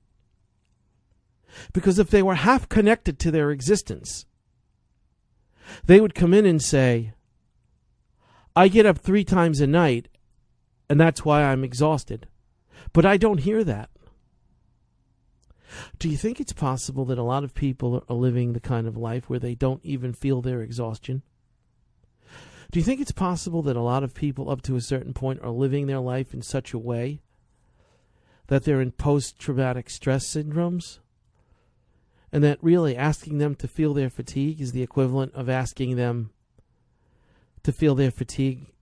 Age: 50-69